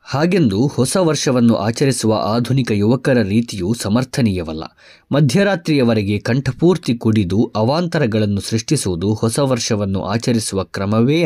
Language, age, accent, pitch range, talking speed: Kannada, 20-39, native, 100-135 Hz, 90 wpm